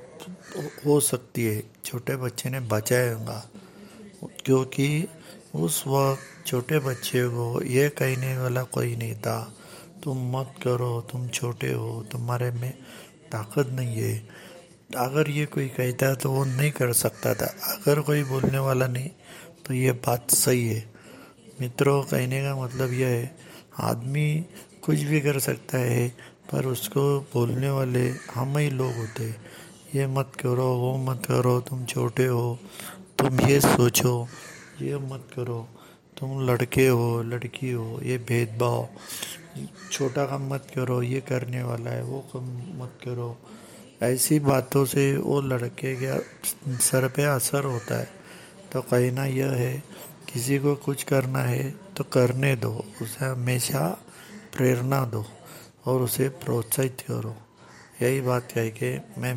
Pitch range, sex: 120-140 Hz, male